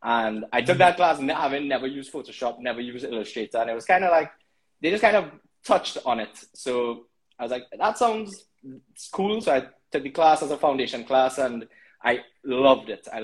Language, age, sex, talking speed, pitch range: English, 20-39, male, 220 wpm, 115-135 Hz